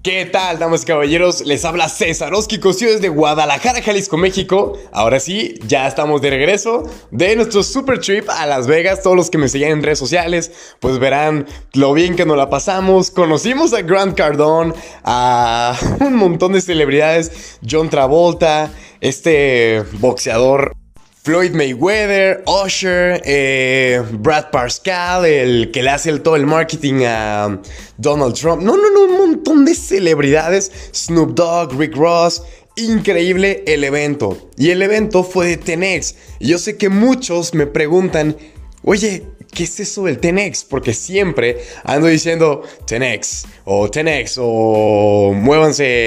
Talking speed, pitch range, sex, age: 150 wpm, 140-190 Hz, male, 20-39